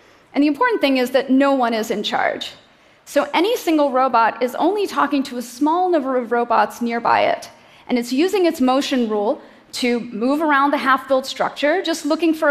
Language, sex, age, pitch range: Korean, female, 30-49, 240-290 Hz